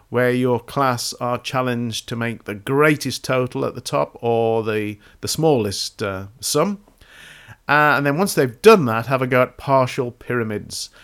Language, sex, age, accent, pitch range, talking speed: English, male, 50-69, British, 115-145 Hz, 175 wpm